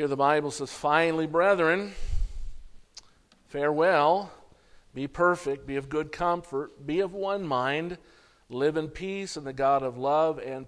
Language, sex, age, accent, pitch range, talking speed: English, male, 50-69, American, 135-155 Hz, 145 wpm